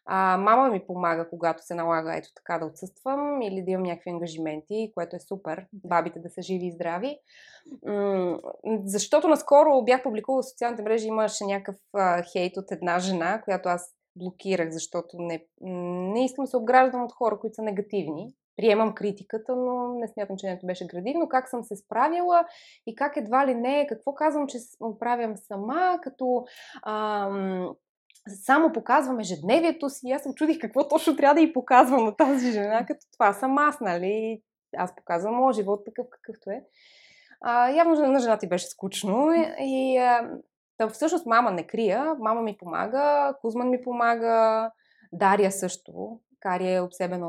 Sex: female